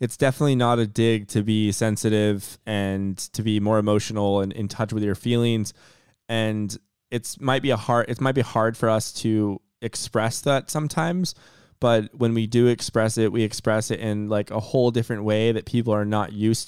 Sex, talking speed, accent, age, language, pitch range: male, 200 wpm, American, 20-39, English, 105-120 Hz